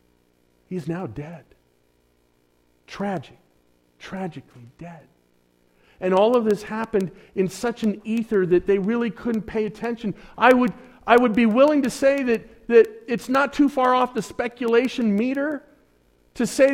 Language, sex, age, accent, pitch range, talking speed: English, male, 50-69, American, 180-260 Hz, 145 wpm